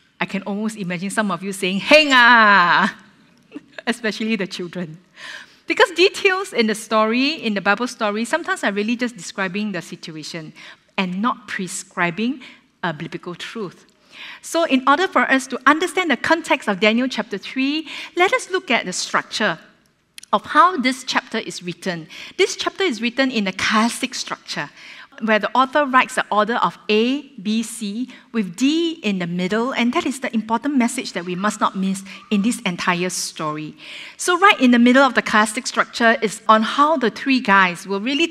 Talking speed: 180 wpm